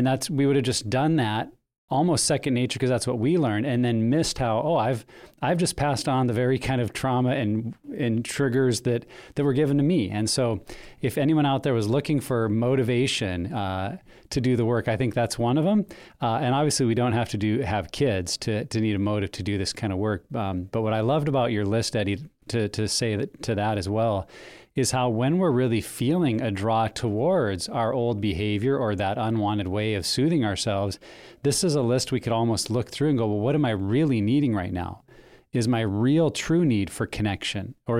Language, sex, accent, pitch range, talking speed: English, male, American, 110-135 Hz, 230 wpm